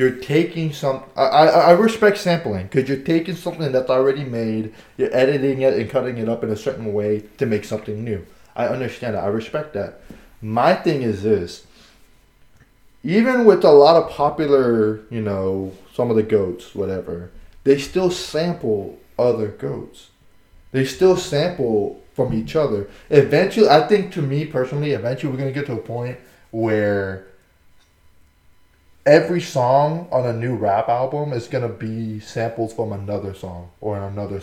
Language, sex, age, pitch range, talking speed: English, male, 20-39, 105-140 Hz, 165 wpm